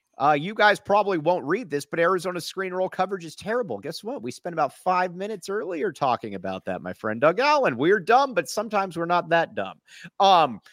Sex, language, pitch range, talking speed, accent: male, English, 135-195 Hz, 215 wpm, American